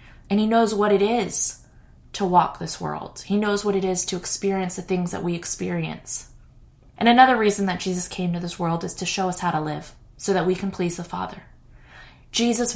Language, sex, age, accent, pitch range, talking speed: English, female, 20-39, American, 170-205 Hz, 215 wpm